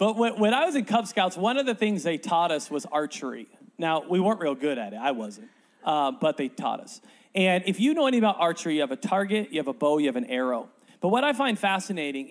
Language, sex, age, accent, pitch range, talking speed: English, male, 40-59, American, 160-225 Hz, 265 wpm